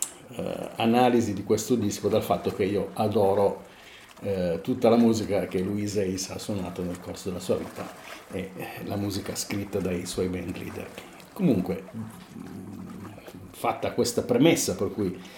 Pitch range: 95-115 Hz